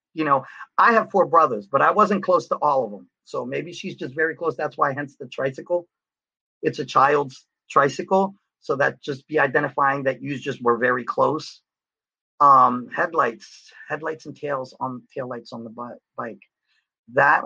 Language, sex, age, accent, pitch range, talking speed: English, male, 40-59, American, 120-145 Hz, 170 wpm